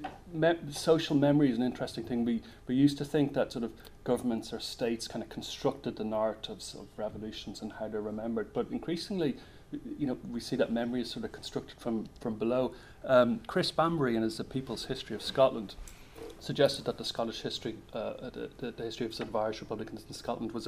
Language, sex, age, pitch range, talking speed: English, male, 30-49, 110-135 Hz, 210 wpm